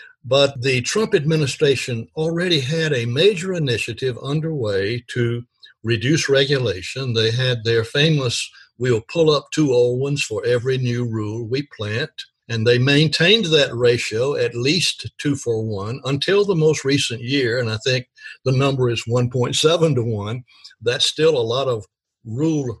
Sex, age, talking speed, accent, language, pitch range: male, 60-79, 155 wpm, American, English, 115-155 Hz